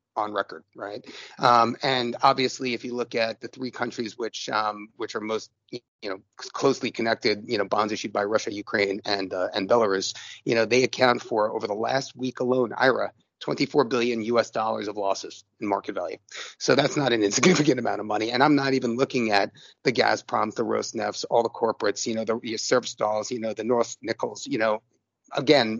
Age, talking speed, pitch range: 30-49, 200 wpm, 110-135 Hz